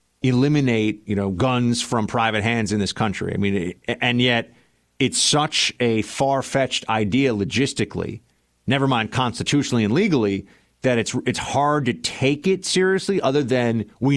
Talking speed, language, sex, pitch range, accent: 155 wpm, English, male, 95-125 Hz, American